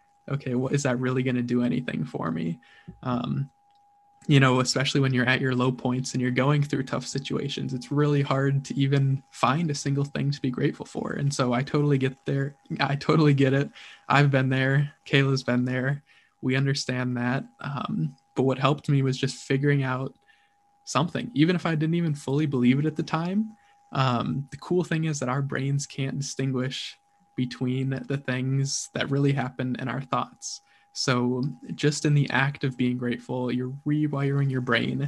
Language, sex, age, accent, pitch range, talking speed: English, male, 20-39, American, 130-155 Hz, 190 wpm